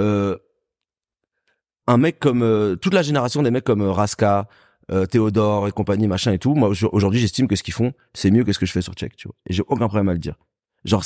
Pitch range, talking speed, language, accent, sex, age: 100-130 Hz, 250 wpm, French, French, male, 30-49